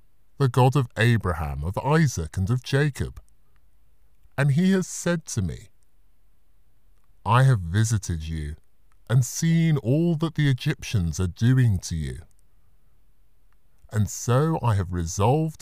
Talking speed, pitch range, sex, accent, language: 130 wpm, 90-135 Hz, female, British, English